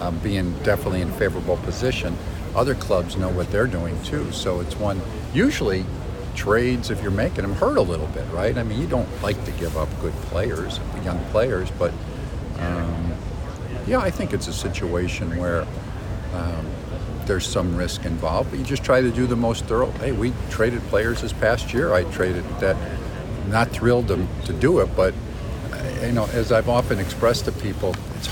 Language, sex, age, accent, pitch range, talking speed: English, male, 50-69, American, 90-115 Hz, 190 wpm